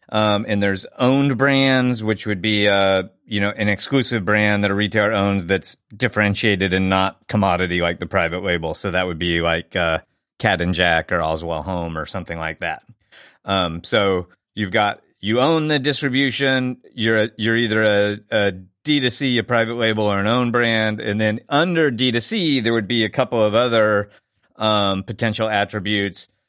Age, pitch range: 30-49, 100-120 Hz